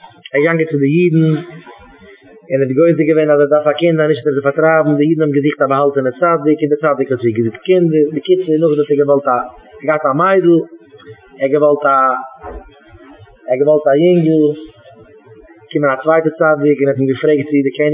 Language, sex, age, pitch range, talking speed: English, male, 20-39, 145-175 Hz, 160 wpm